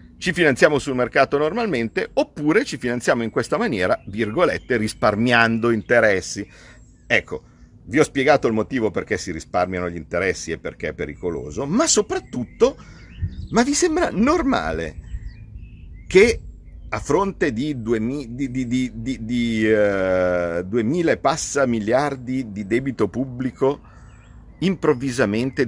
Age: 50-69